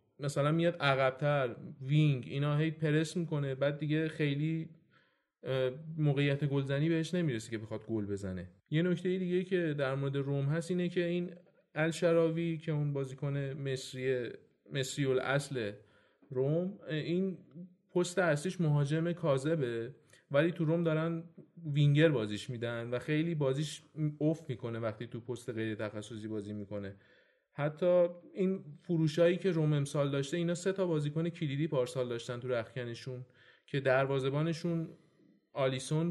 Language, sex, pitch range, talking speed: Persian, male, 130-165 Hz, 135 wpm